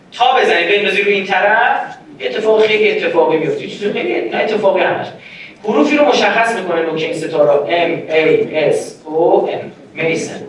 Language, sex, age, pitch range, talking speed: Persian, male, 40-59, 175-280 Hz, 185 wpm